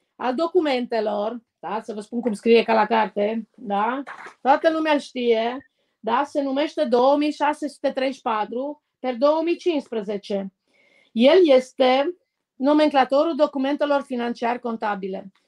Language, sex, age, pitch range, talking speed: Romanian, female, 30-49, 240-310 Hz, 110 wpm